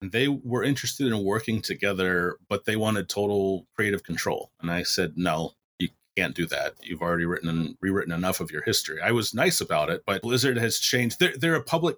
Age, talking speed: 30-49, 210 wpm